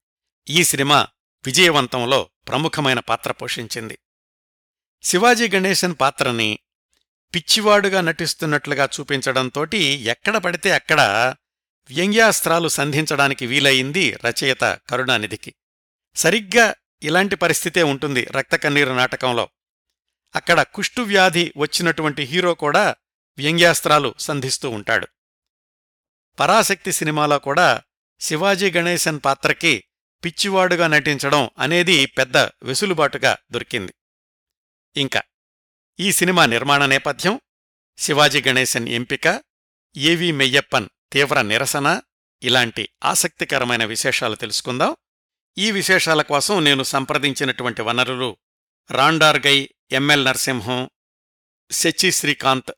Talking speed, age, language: 85 wpm, 60-79, Telugu